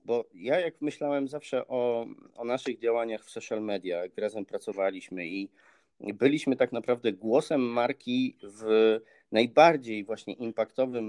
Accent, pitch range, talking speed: native, 115-155 Hz, 135 wpm